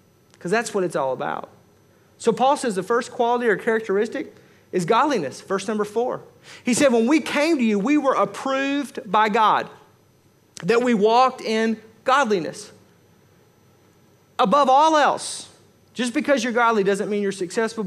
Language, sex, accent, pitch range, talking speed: English, male, American, 180-235 Hz, 160 wpm